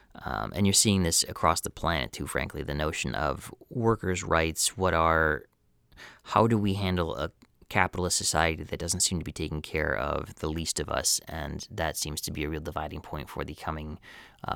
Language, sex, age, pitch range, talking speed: English, male, 30-49, 80-100 Hz, 200 wpm